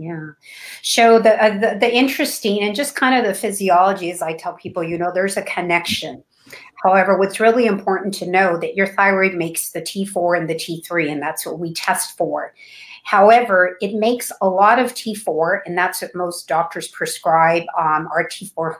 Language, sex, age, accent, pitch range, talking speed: English, female, 50-69, American, 170-210 Hz, 185 wpm